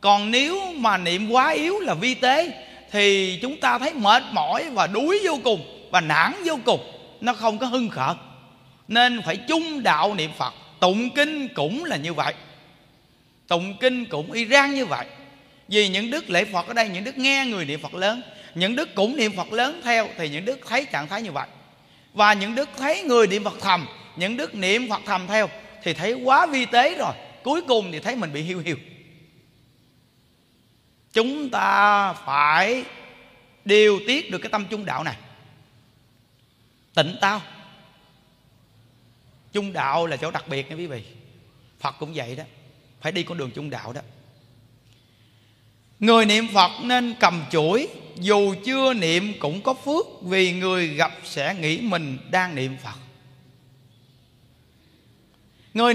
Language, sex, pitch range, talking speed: Vietnamese, male, 145-235 Hz, 170 wpm